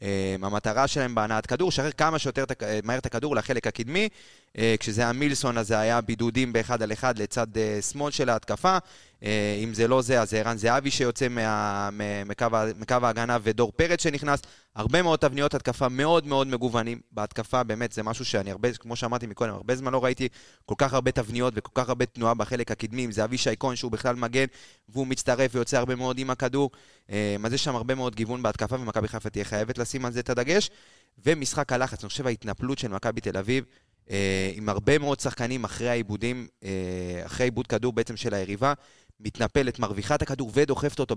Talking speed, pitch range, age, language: 170 wpm, 110-135 Hz, 20-39, Hebrew